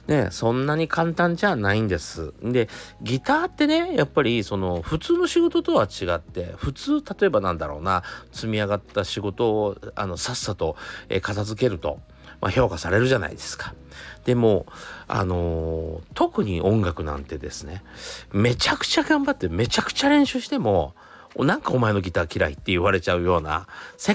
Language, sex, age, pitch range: Japanese, male, 40-59, 85-140 Hz